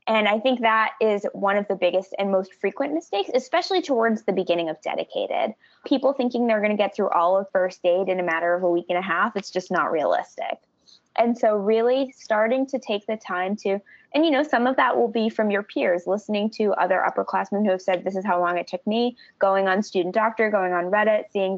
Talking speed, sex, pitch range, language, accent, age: 235 wpm, female, 190-240 Hz, English, American, 20-39